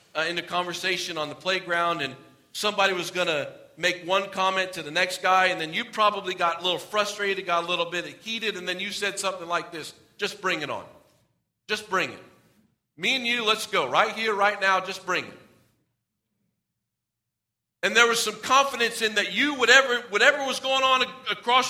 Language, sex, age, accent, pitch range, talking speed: English, male, 40-59, American, 170-255 Hz, 200 wpm